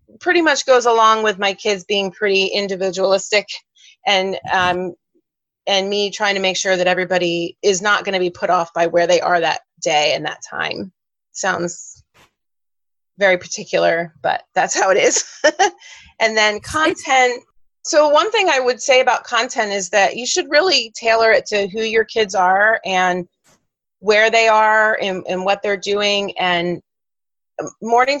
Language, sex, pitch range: English, female, 190-230 Hz